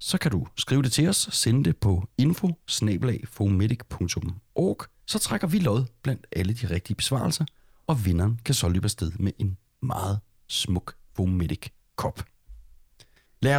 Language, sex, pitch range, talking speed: Danish, male, 95-125 Hz, 145 wpm